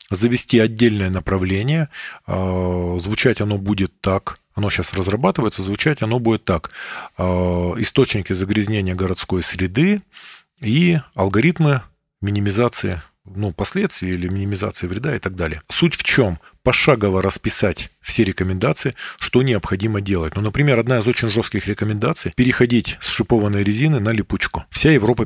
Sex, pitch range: male, 95-130 Hz